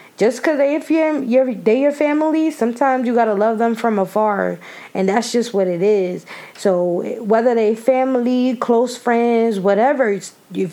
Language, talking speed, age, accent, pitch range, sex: English, 170 wpm, 20-39, American, 200-255 Hz, female